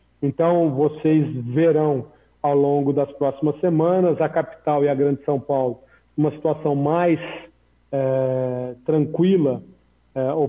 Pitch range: 140-170 Hz